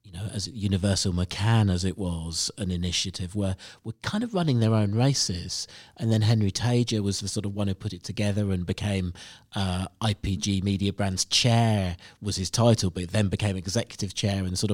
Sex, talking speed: male, 195 wpm